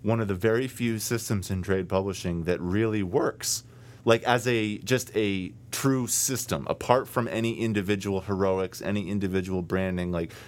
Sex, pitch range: male, 95-120 Hz